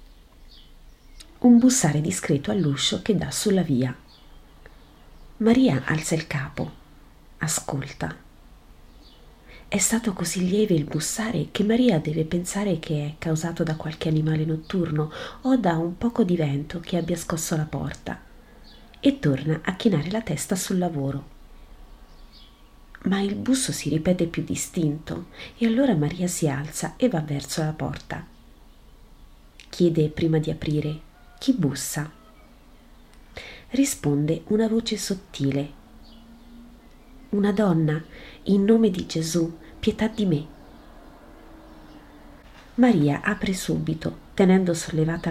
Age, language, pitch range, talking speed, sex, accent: 40-59, Italian, 150-200 Hz, 120 wpm, female, native